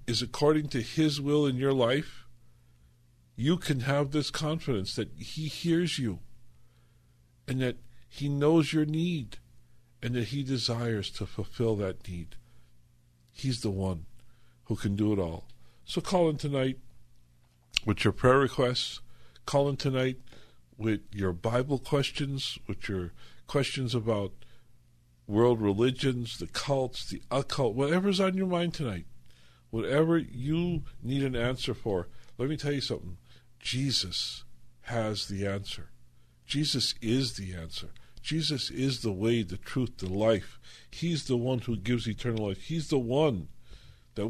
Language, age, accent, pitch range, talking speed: English, 50-69, American, 110-140 Hz, 145 wpm